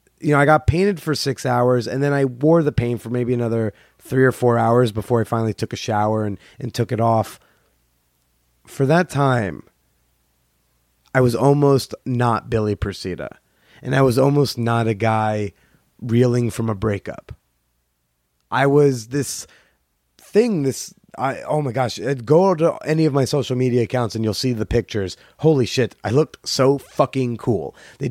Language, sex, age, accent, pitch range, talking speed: English, male, 30-49, American, 110-135 Hz, 175 wpm